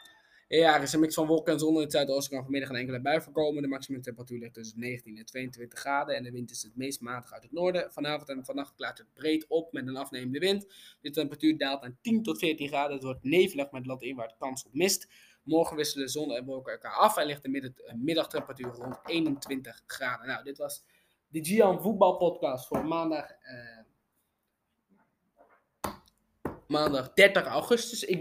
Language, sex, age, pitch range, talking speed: Dutch, male, 20-39, 120-160 Hz, 200 wpm